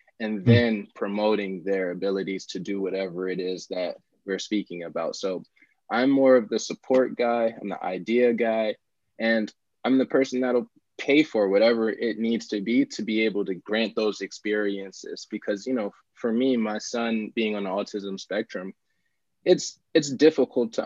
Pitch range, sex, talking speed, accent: 100-120 Hz, male, 175 wpm, American